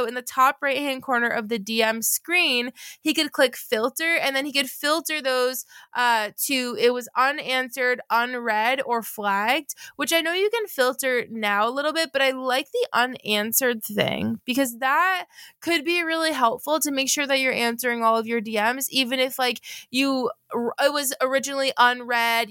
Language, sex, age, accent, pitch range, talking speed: English, female, 20-39, American, 235-290 Hz, 180 wpm